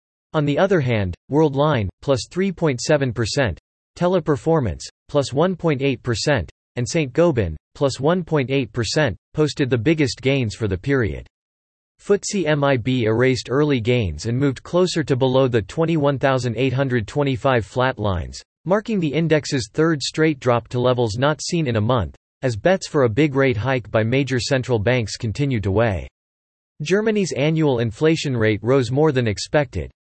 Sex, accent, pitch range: male, American, 115-155 Hz